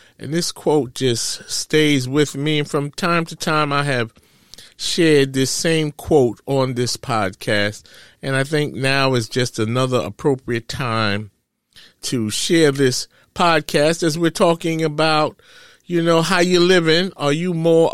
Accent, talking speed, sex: American, 155 wpm, male